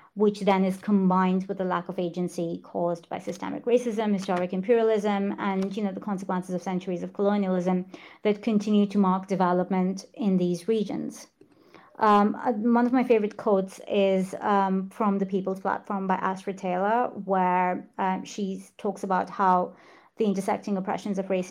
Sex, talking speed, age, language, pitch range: female, 160 wpm, 30-49, English, 185-210 Hz